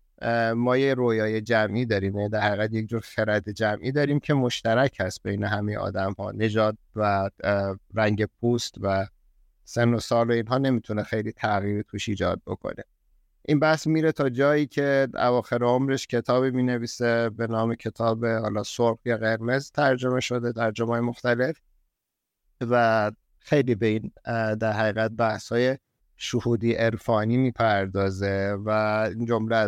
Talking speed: 145 wpm